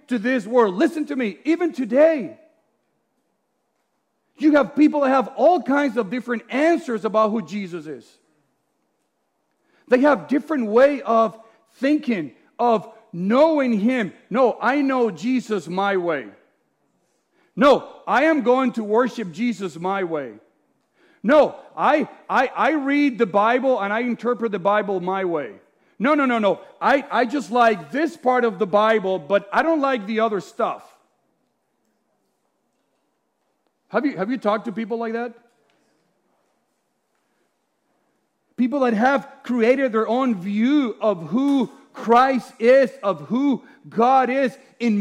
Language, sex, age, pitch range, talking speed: English, male, 50-69, 200-265 Hz, 140 wpm